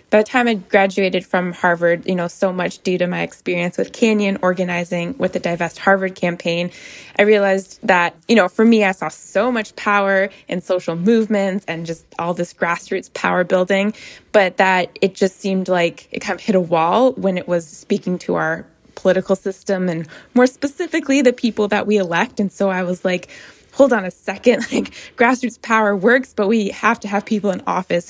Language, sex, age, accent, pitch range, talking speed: English, female, 20-39, American, 175-210 Hz, 200 wpm